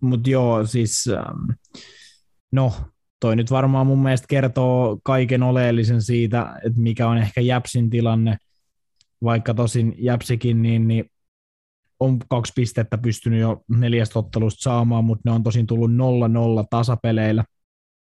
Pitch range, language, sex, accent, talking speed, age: 105-120 Hz, Finnish, male, native, 130 wpm, 20-39